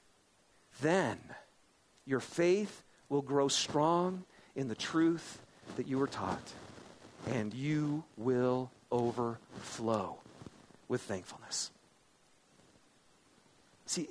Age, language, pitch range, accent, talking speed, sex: 40-59, English, 165-245 Hz, American, 85 wpm, male